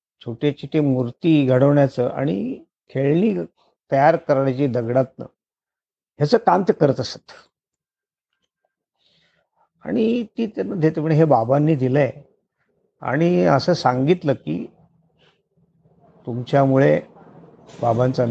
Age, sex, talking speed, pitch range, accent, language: 50-69, male, 90 wpm, 120-155 Hz, native, Marathi